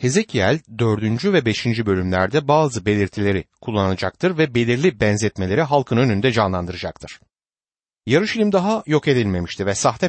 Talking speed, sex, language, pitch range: 120 wpm, male, Turkish, 105-165 Hz